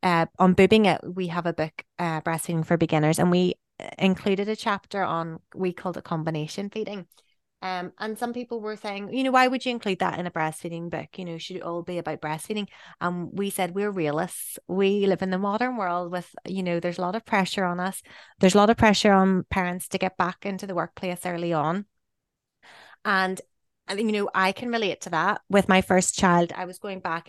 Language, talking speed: English, 220 wpm